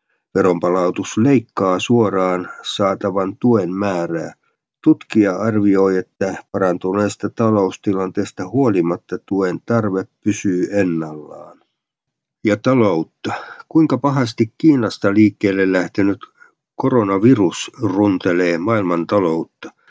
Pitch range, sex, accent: 90-110 Hz, male, native